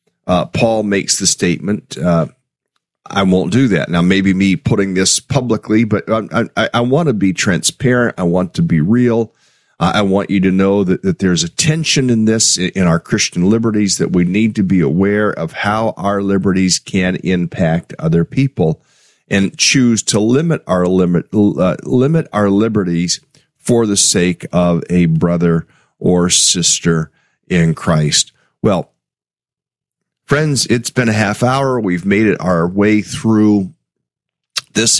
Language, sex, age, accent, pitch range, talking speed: English, male, 40-59, American, 85-110 Hz, 160 wpm